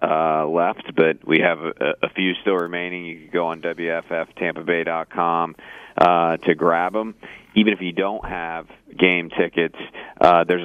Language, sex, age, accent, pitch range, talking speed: English, male, 40-59, American, 80-90 Hz, 165 wpm